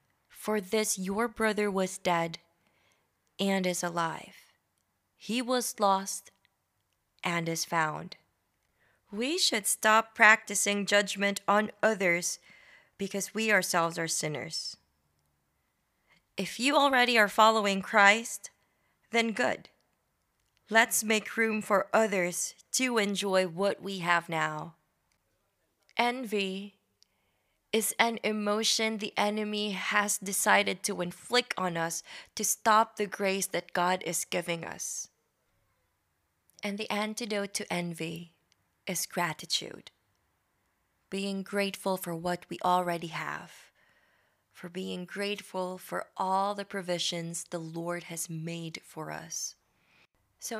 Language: English